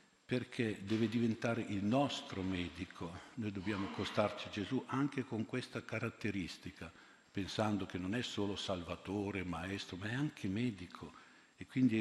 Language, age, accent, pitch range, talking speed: Italian, 60-79, native, 95-115 Hz, 140 wpm